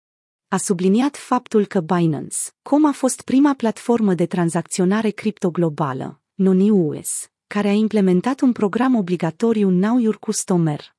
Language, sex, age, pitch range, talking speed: Romanian, female, 30-49, 175-220 Hz, 115 wpm